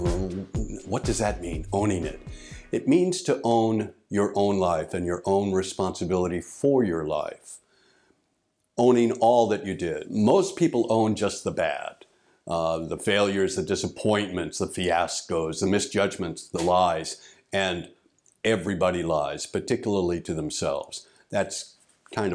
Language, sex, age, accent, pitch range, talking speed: English, male, 60-79, American, 90-110 Hz, 135 wpm